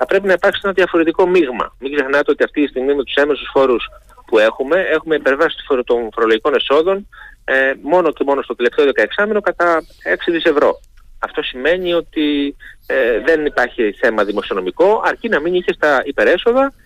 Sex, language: male, Greek